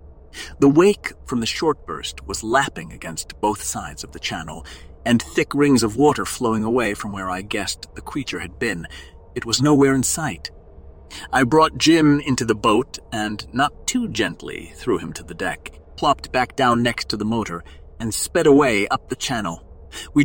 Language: English